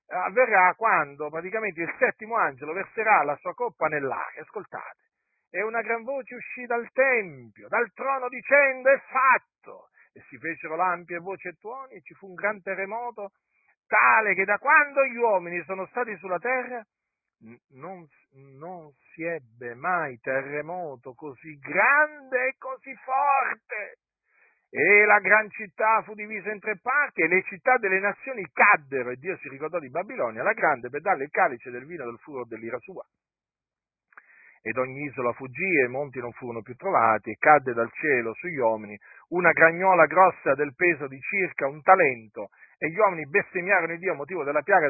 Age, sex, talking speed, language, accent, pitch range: 50-69, male, 170 wpm, Italian, native, 150-225 Hz